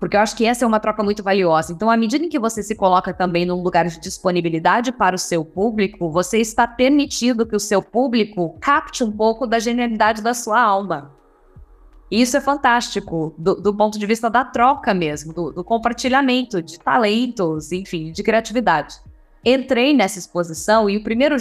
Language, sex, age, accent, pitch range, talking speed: Portuguese, female, 10-29, Brazilian, 180-230 Hz, 190 wpm